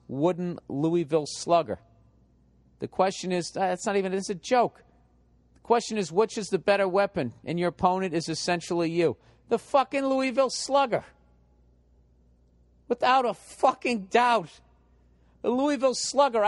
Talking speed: 135 wpm